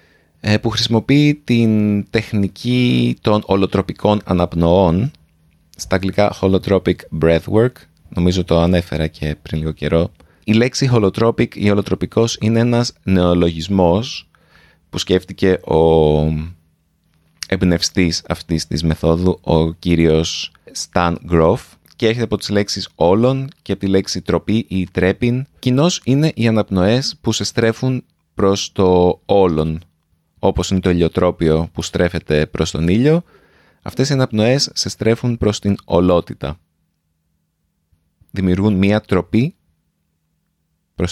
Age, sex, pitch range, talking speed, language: 30-49, male, 85-115 Hz, 120 wpm, Greek